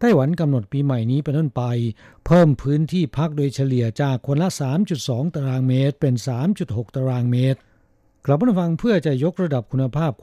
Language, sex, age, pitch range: Thai, male, 60-79, 125-155 Hz